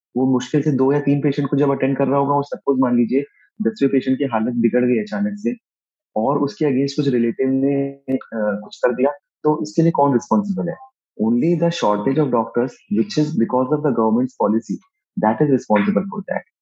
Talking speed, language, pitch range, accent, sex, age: 120 wpm, Hindi, 120-150 Hz, native, male, 30-49